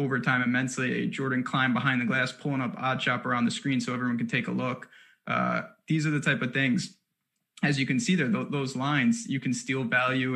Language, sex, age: English, male, 20-39